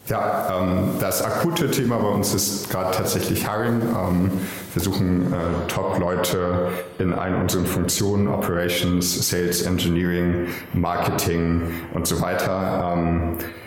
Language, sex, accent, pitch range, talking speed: German, male, German, 85-95 Hz, 105 wpm